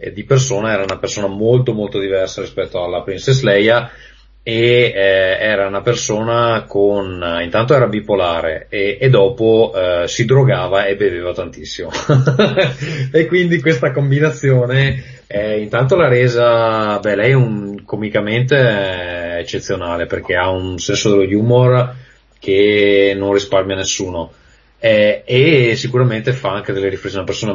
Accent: native